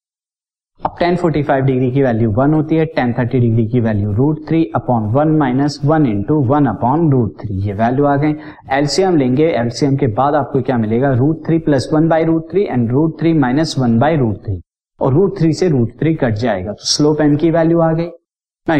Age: 50-69